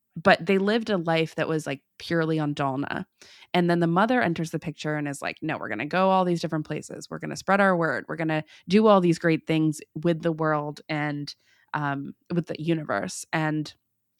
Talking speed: 225 wpm